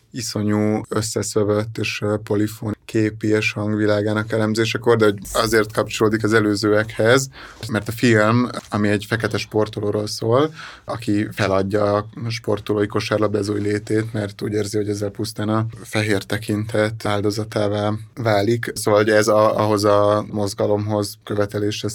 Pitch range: 105-110 Hz